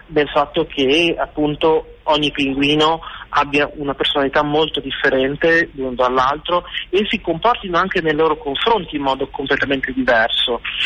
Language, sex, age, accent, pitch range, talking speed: Italian, male, 30-49, native, 130-170 Hz, 140 wpm